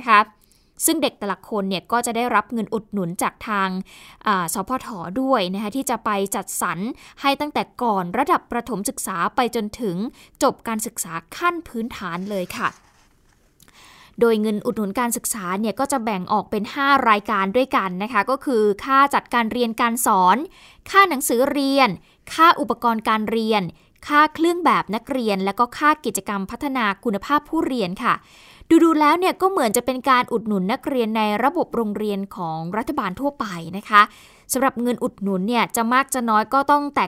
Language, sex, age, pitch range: Thai, female, 20-39, 205-270 Hz